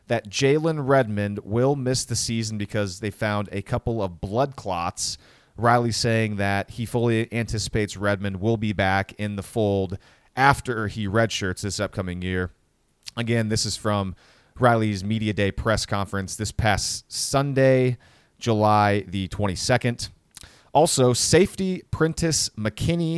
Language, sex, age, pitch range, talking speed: English, male, 30-49, 100-125 Hz, 135 wpm